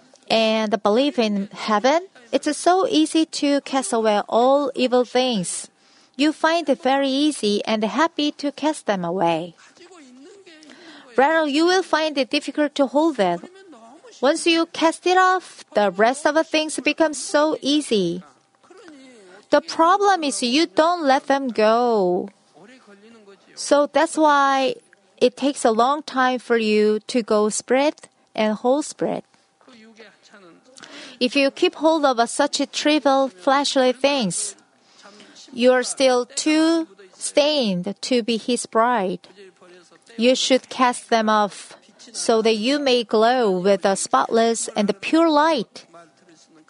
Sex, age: female, 40-59